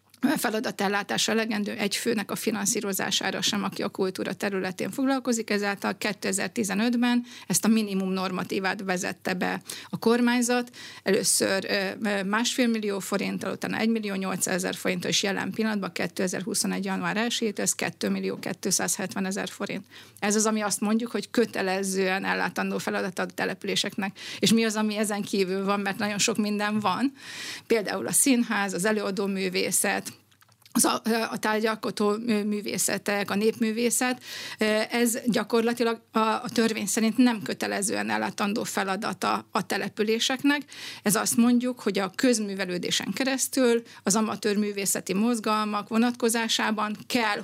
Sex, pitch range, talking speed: female, 200-230 Hz, 125 wpm